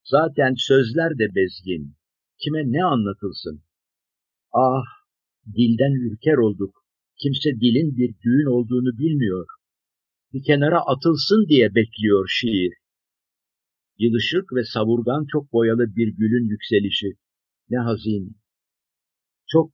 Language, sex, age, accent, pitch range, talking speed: Turkish, male, 50-69, native, 100-130 Hz, 105 wpm